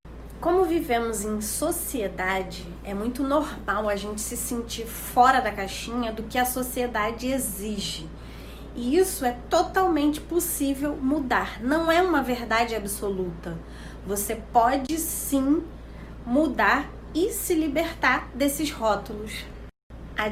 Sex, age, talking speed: female, 20-39, 120 wpm